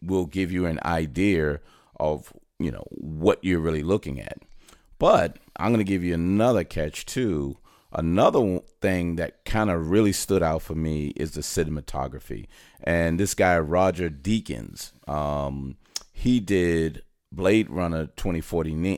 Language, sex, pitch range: English, male, 75-95 Hz